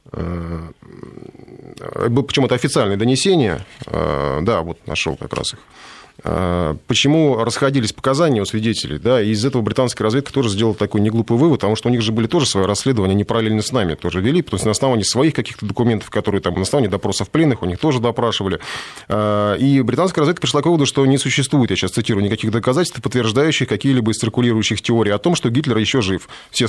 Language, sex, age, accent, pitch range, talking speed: Russian, male, 30-49, native, 105-140 Hz, 185 wpm